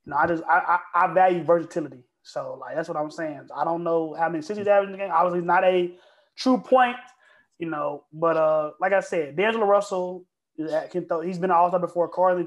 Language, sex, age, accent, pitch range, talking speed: English, male, 20-39, American, 155-185 Hz, 225 wpm